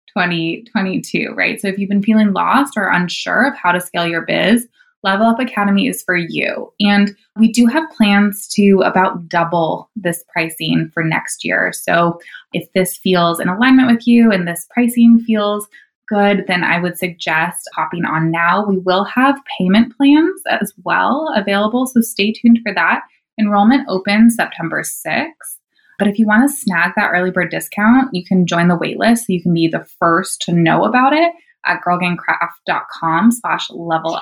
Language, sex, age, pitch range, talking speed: English, female, 20-39, 175-230 Hz, 175 wpm